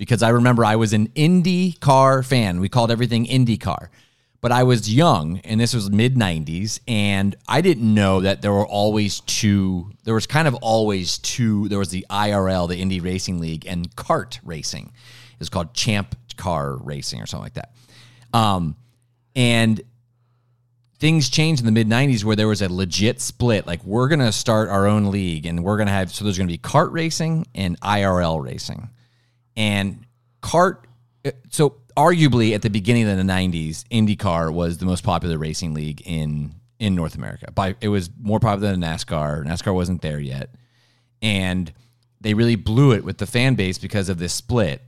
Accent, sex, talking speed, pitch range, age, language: American, male, 185 wpm, 90-120 Hz, 30-49, English